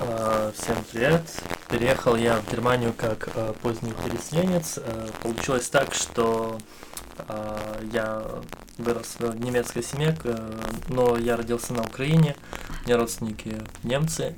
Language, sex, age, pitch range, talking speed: Russian, male, 20-39, 110-120 Hz, 110 wpm